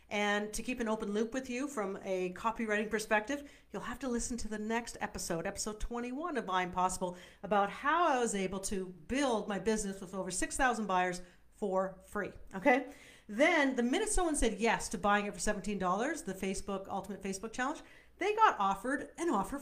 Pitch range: 195-260 Hz